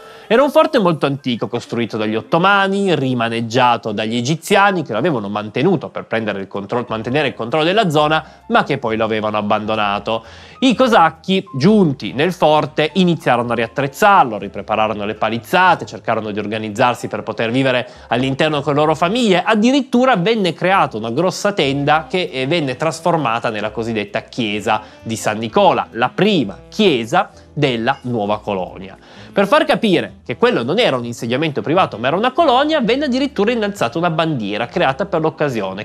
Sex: male